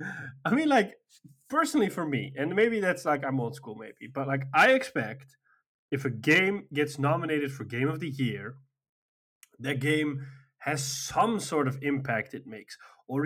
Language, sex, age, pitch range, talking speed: English, male, 20-39, 135-185 Hz, 170 wpm